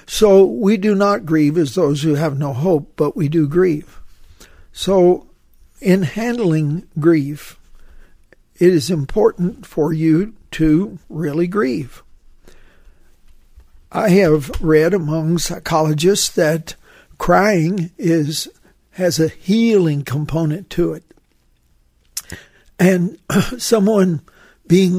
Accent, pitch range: American, 150-180 Hz